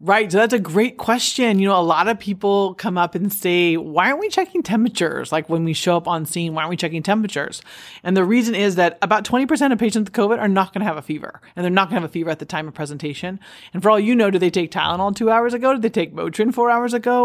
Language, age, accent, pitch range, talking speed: English, 40-59, American, 165-205 Hz, 290 wpm